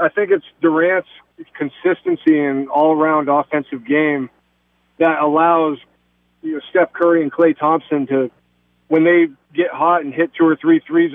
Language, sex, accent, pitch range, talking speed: English, male, American, 145-180 Hz, 145 wpm